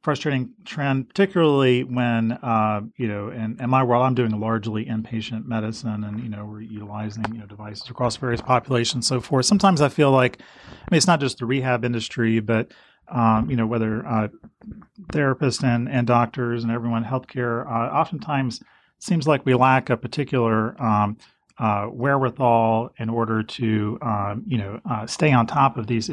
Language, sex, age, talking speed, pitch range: English, male, 30-49, 180 wpm, 110-125 Hz